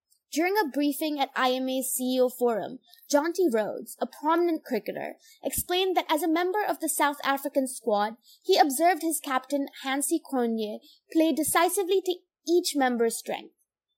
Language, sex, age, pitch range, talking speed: English, female, 20-39, 255-325 Hz, 145 wpm